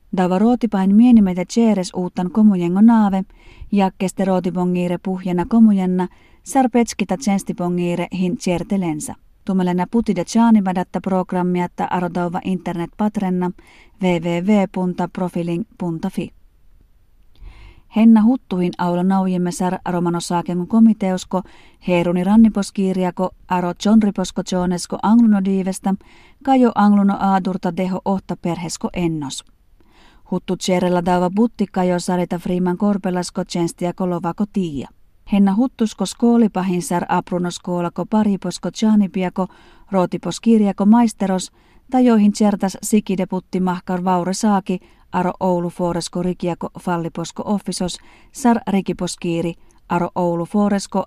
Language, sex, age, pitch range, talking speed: Finnish, female, 30-49, 180-205 Hz, 90 wpm